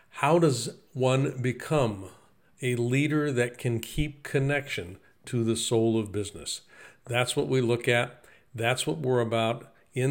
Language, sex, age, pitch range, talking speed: English, male, 50-69, 120-150 Hz, 150 wpm